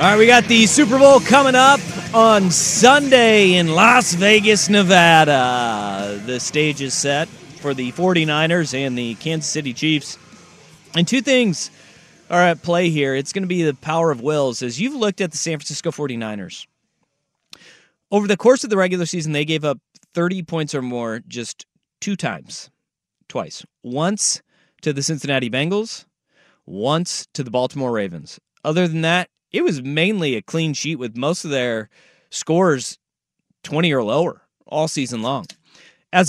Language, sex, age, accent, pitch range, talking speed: English, male, 30-49, American, 140-185 Hz, 165 wpm